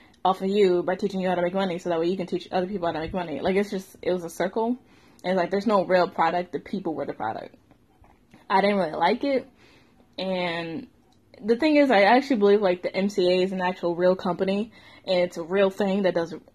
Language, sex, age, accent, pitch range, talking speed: English, female, 10-29, American, 170-205 Hz, 245 wpm